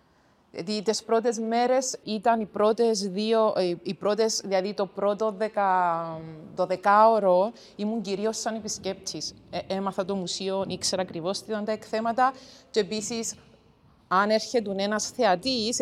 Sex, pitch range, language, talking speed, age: female, 180-225 Hz, Greek, 135 wpm, 30-49